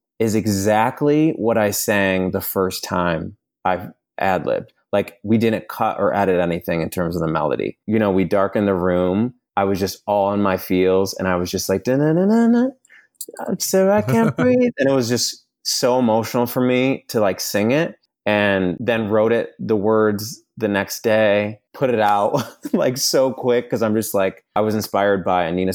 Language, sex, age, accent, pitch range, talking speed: English, male, 30-49, American, 95-115 Hz, 195 wpm